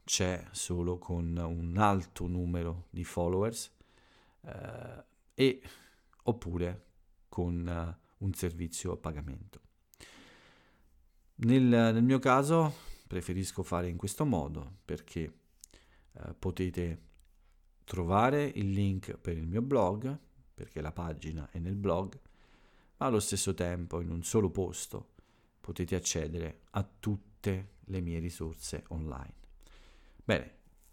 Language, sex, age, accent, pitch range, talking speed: Italian, male, 50-69, native, 85-100 Hz, 115 wpm